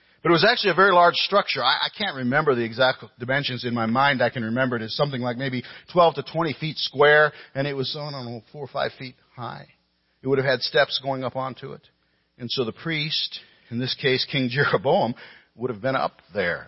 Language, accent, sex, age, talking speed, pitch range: English, American, male, 50-69, 230 wpm, 100-140 Hz